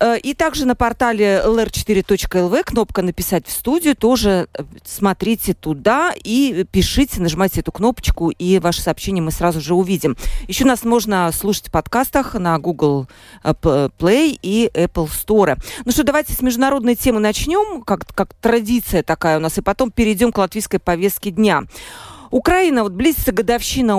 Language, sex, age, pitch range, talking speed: Russian, female, 40-59, 180-235 Hz, 150 wpm